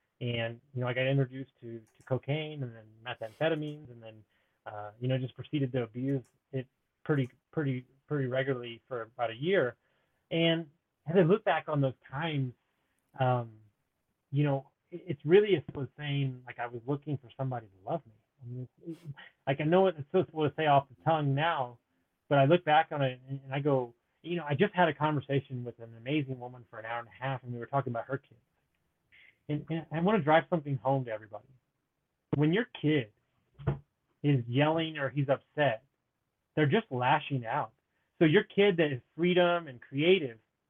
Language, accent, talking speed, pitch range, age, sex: English, American, 200 wpm, 125-155 Hz, 30-49, male